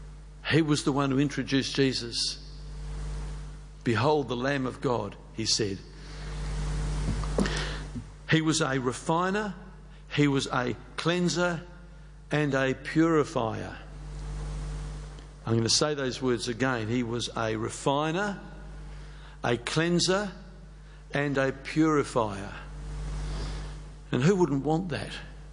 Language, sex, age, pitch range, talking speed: English, male, 60-79, 140-160 Hz, 110 wpm